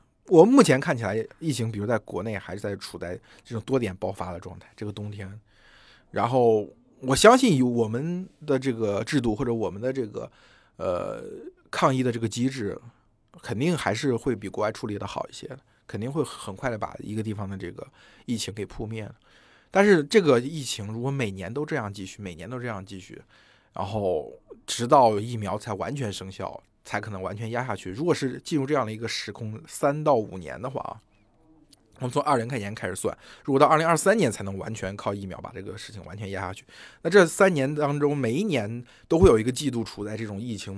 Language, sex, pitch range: Chinese, male, 100-130 Hz